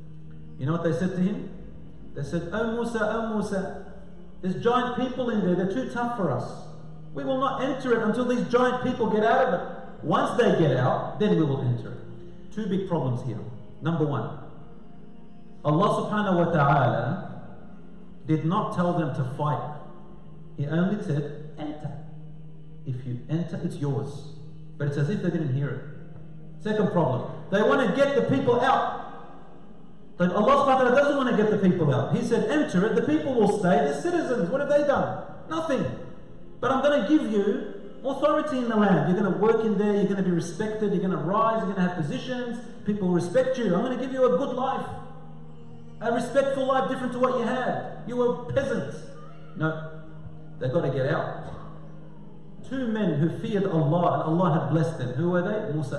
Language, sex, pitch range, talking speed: English, male, 155-230 Hz, 195 wpm